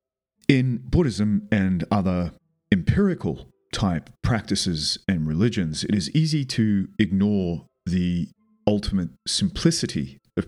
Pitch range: 90-115 Hz